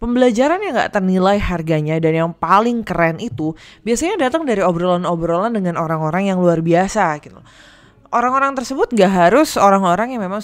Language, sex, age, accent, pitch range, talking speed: Indonesian, female, 20-39, native, 170-225 Hz, 155 wpm